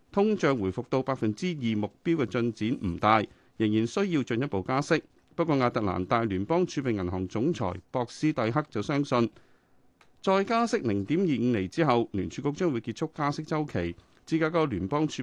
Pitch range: 110-155 Hz